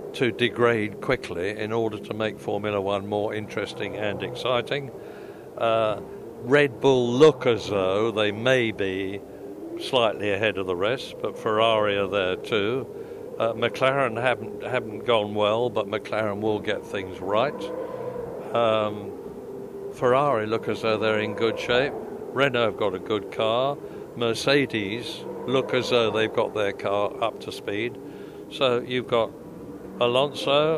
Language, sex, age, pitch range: English, male, 60-79, 105-135 Hz